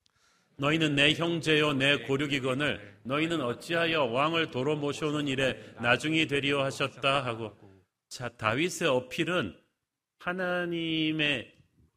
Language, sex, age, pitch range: Korean, male, 40-59, 115-150 Hz